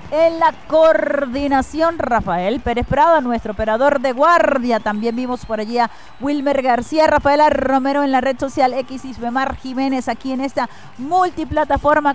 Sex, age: female, 40-59